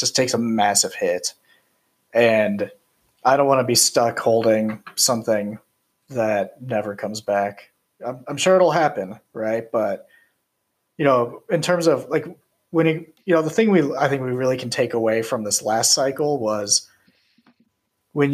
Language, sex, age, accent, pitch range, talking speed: English, male, 30-49, American, 105-145 Hz, 165 wpm